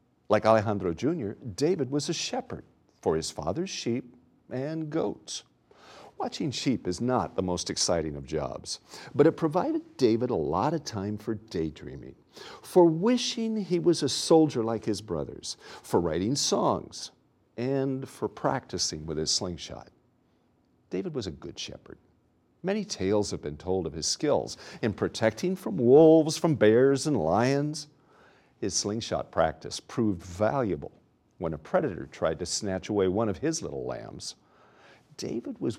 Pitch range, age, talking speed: 95-155 Hz, 50-69, 150 wpm